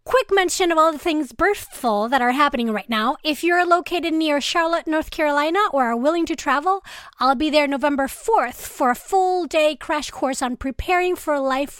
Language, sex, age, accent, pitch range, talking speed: English, female, 30-49, American, 270-335 Hz, 200 wpm